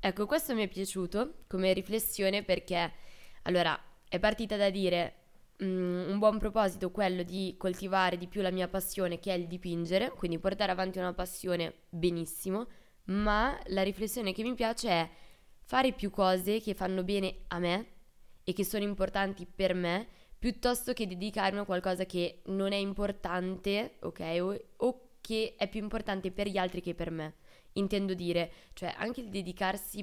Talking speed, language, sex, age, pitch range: 165 wpm, Italian, female, 20-39, 175-205 Hz